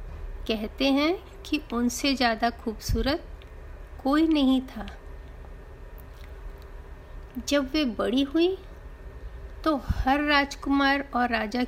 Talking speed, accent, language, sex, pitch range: 90 wpm, native, Hindi, female, 190-280 Hz